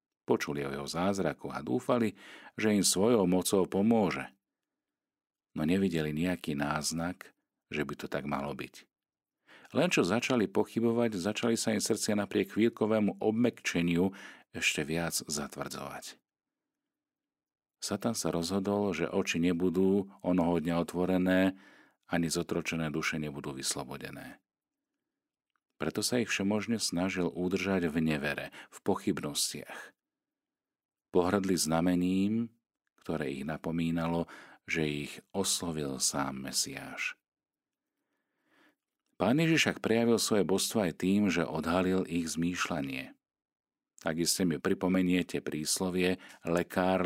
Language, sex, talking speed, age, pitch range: Slovak, male, 110 wpm, 40-59, 80-105 Hz